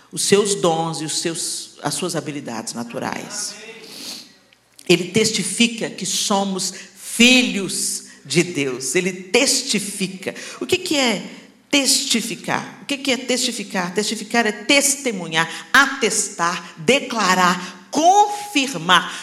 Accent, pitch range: Brazilian, 165-225 Hz